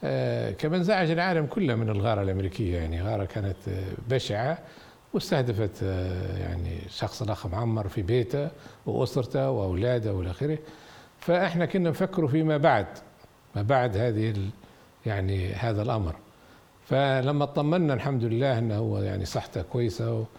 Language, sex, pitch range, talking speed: Arabic, male, 115-160 Hz, 120 wpm